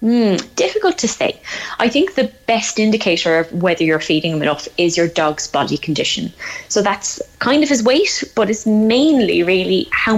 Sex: female